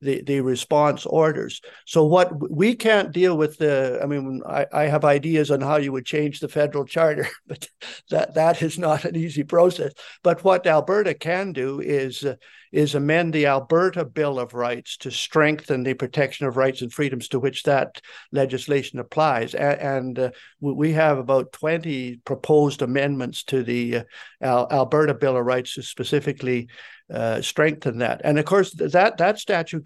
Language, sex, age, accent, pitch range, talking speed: English, male, 50-69, American, 130-155 Hz, 170 wpm